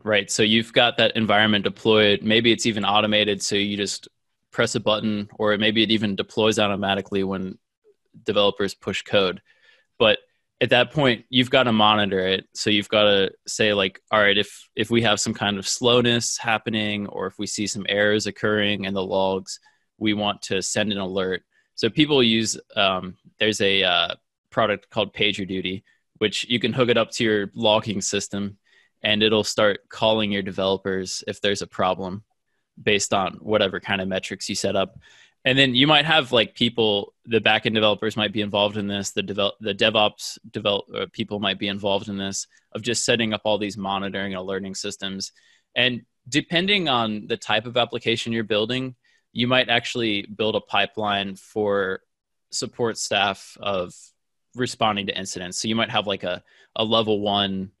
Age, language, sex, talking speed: 20-39, English, male, 180 wpm